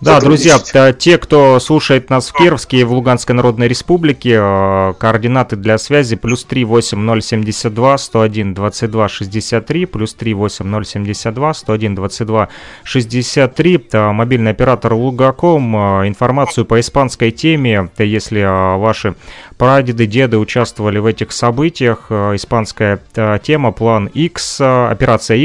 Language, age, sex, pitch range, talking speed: Russian, 30-49, male, 110-135 Hz, 125 wpm